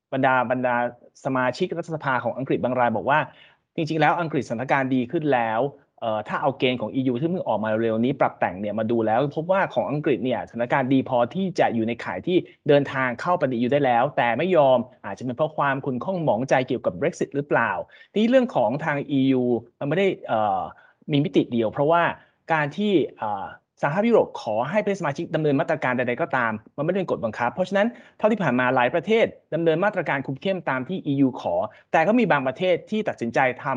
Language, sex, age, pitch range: Thai, male, 20-39, 125-175 Hz